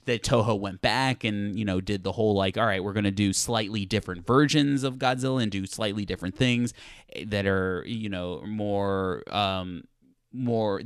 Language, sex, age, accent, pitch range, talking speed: English, male, 20-39, American, 95-125 Hz, 190 wpm